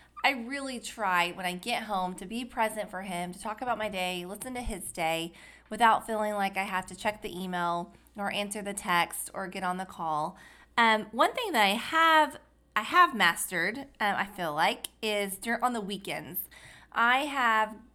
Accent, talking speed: American, 195 wpm